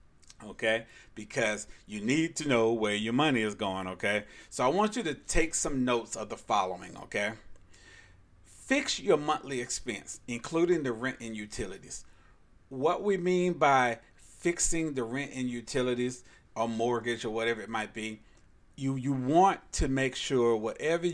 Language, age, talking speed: English, 40-59, 160 wpm